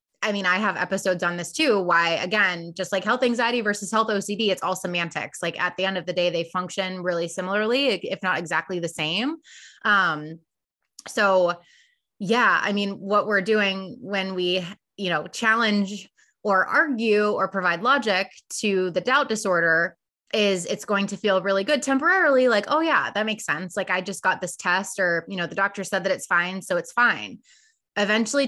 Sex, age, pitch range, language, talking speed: female, 20-39, 180-210 Hz, English, 190 wpm